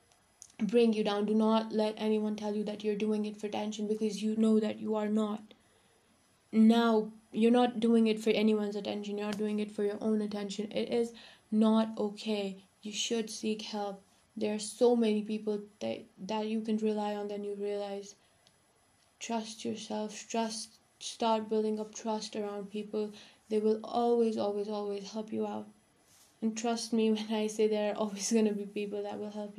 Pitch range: 210-225 Hz